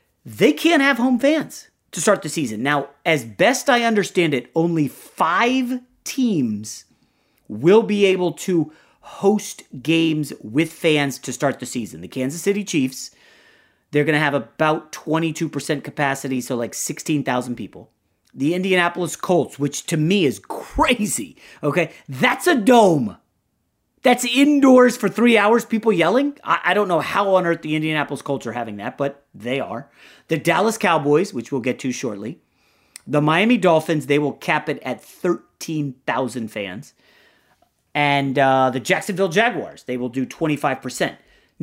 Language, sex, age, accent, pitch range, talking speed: English, male, 30-49, American, 145-230 Hz, 155 wpm